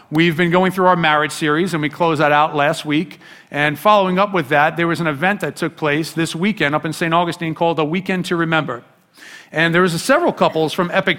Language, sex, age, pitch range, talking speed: English, male, 40-59, 150-185 Hz, 235 wpm